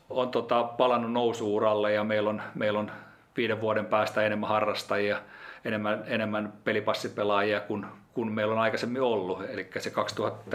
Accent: native